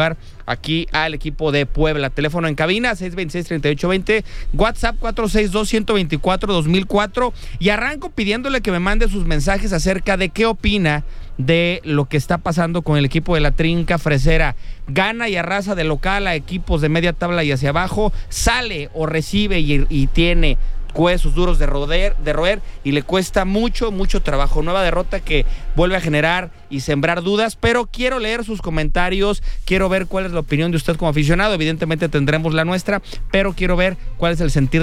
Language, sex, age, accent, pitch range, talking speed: English, male, 30-49, Mexican, 150-190 Hz, 175 wpm